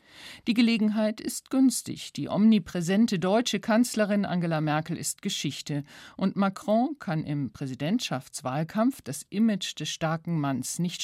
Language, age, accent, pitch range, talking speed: German, 50-69, German, 160-215 Hz, 125 wpm